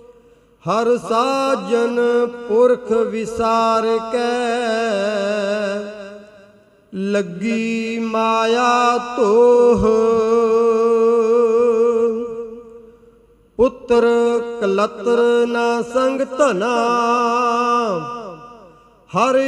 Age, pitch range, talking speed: 40-59, 225-245 Hz, 40 wpm